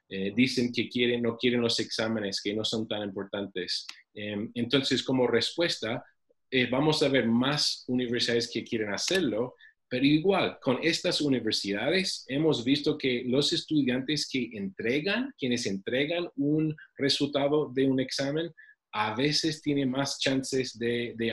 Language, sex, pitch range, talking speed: English, male, 115-155 Hz, 145 wpm